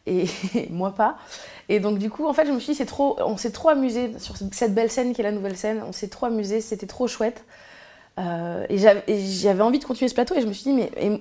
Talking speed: 280 wpm